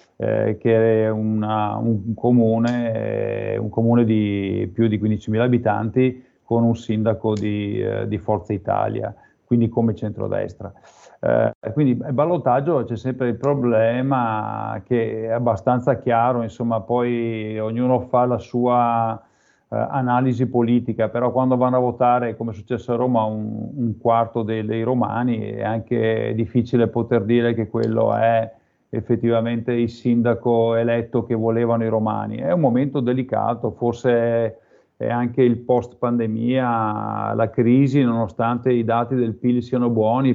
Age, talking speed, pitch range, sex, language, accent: 40-59, 145 wpm, 110-120 Hz, male, Italian, native